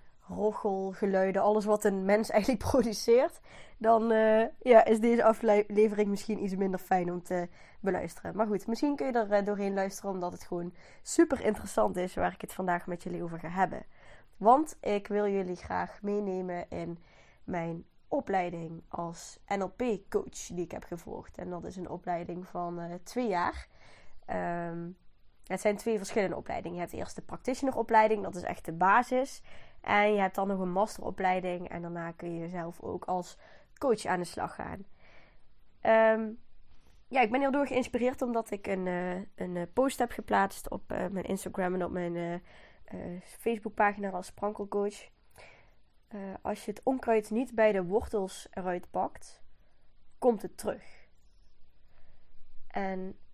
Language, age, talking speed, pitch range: Dutch, 20-39, 165 wpm, 180-220 Hz